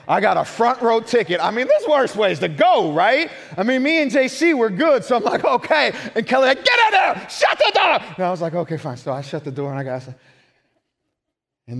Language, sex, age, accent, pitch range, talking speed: English, male, 30-49, American, 130-200 Hz, 255 wpm